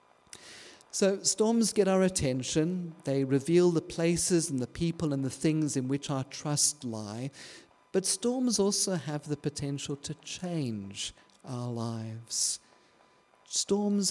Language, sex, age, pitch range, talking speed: English, male, 50-69, 135-180 Hz, 130 wpm